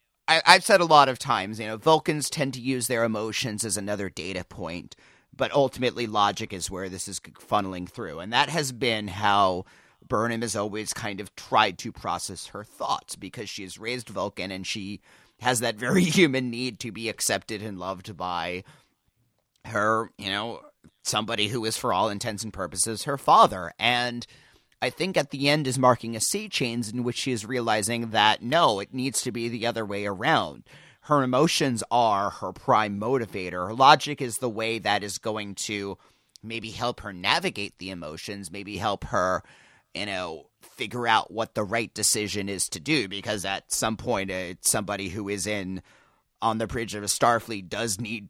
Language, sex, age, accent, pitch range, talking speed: English, male, 30-49, American, 100-125 Hz, 190 wpm